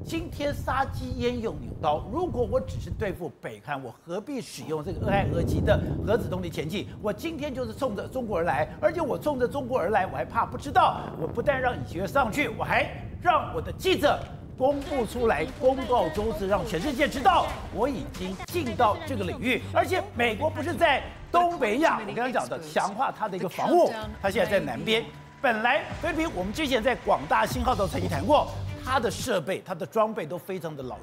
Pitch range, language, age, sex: 190-280 Hz, Chinese, 50-69, male